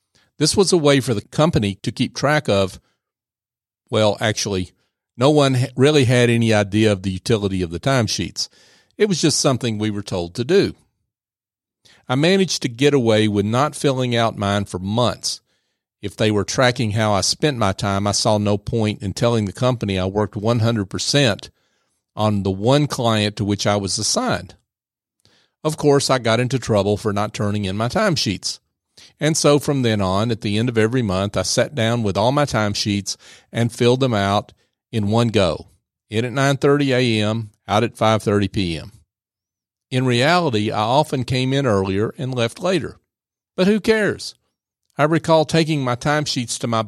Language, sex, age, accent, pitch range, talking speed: English, male, 40-59, American, 100-130 Hz, 180 wpm